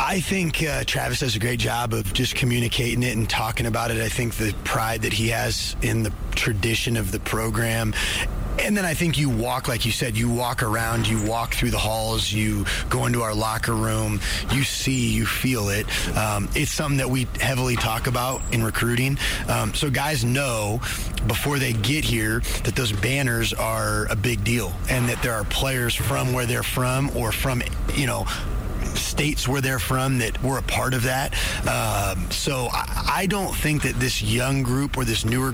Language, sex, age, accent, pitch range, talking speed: English, male, 30-49, American, 110-130 Hz, 200 wpm